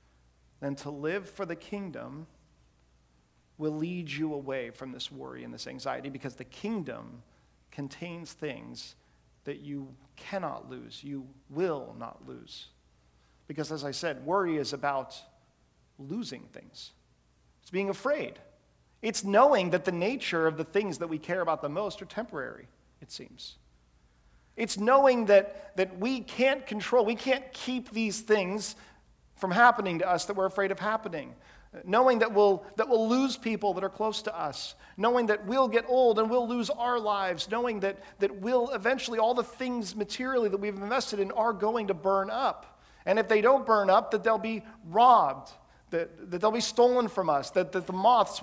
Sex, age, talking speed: male, 40-59, 175 wpm